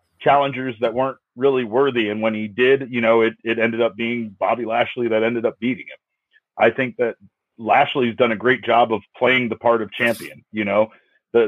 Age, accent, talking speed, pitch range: 30-49, American, 210 wpm, 115-145 Hz